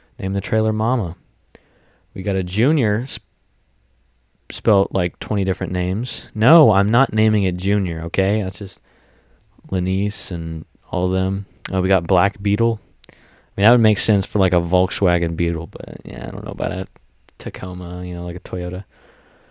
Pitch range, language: 90-110 Hz, English